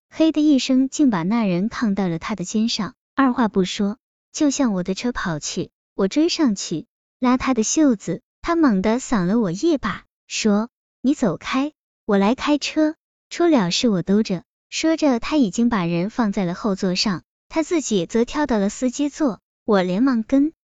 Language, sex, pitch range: Chinese, male, 190-260 Hz